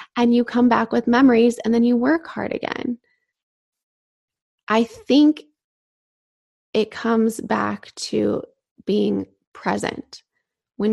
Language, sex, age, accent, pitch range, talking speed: English, female, 20-39, American, 210-245 Hz, 115 wpm